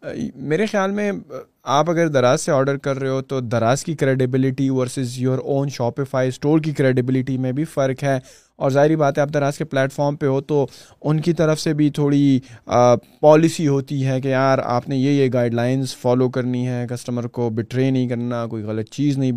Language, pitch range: Urdu, 125-145 Hz